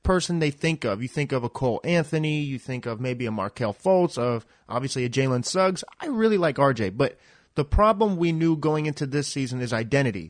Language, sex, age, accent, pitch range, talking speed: English, male, 30-49, American, 125-160 Hz, 215 wpm